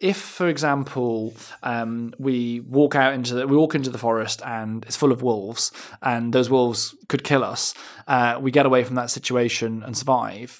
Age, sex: 20-39, male